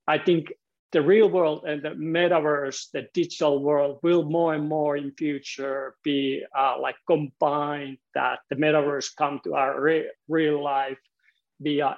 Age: 50-69